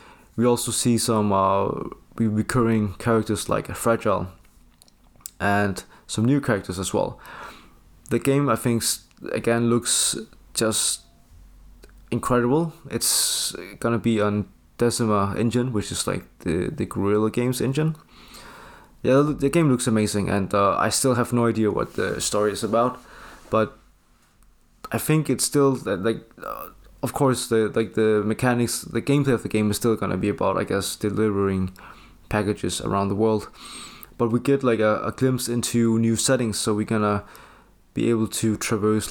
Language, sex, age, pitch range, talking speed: English, male, 20-39, 100-120 Hz, 155 wpm